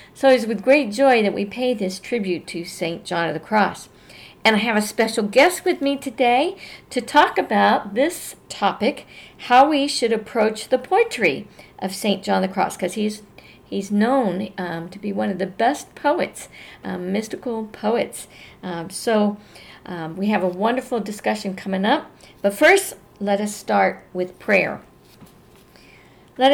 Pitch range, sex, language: 180-235 Hz, female, English